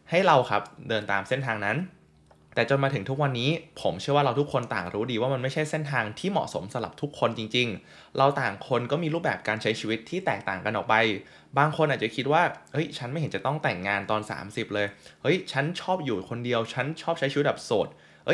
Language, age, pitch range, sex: Thai, 20-39, 105-145 Hz, male